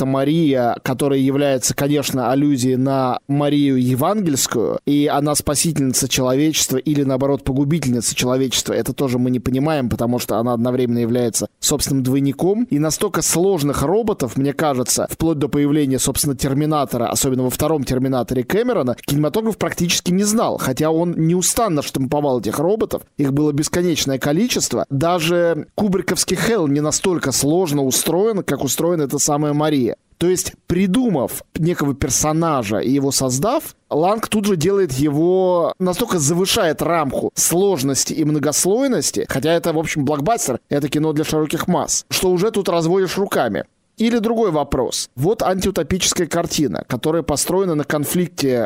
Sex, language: male, Russian